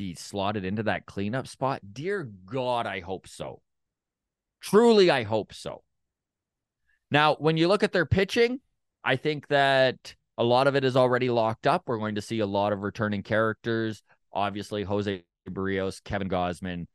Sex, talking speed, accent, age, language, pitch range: male, 165 wpm, American, 20-39, English, 100-135 Hz